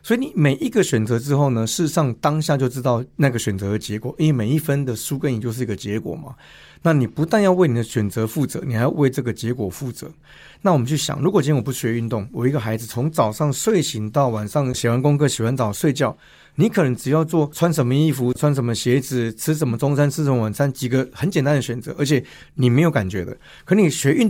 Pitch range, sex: 120-155 Hz, male